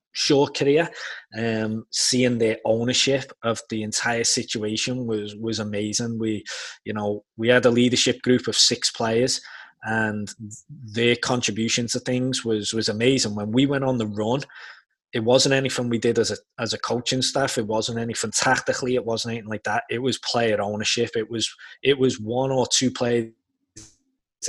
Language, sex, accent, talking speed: English, male, British, 170 wpm